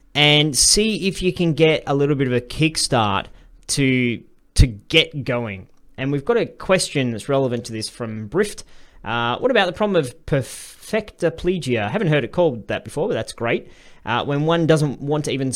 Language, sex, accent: English, male, Australian